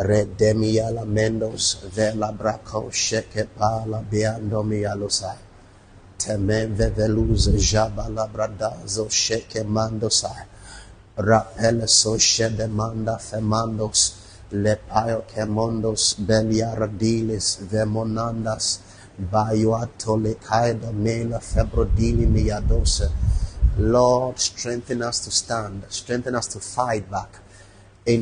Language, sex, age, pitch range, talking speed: English, male, 30-49, 100-120 Hz, 95 wpm